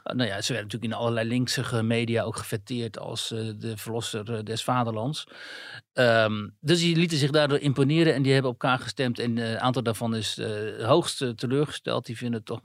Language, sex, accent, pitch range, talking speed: Dutch, male, Dutch, 110-130 Hz, 205 wpm